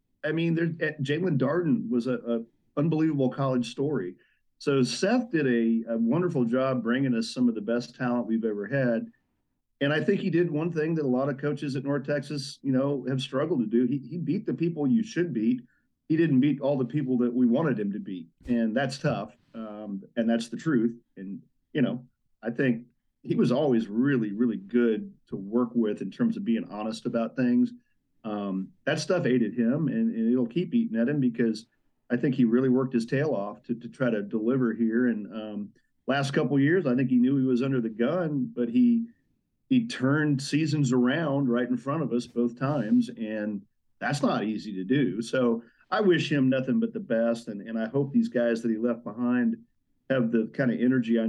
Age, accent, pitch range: 40-59, American, 115-150 Hz